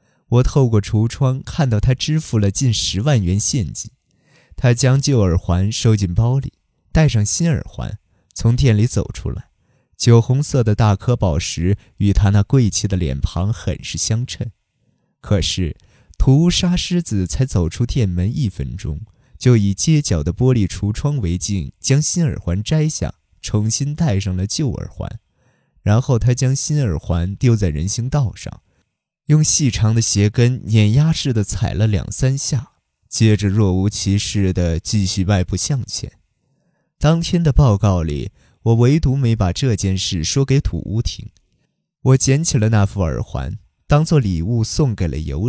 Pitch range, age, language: 95-130 Hz, 20-39, Chinese